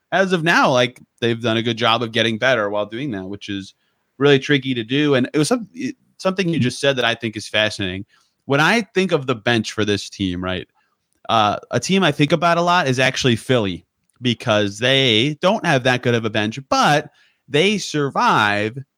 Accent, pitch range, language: American, 110-145 Hz, English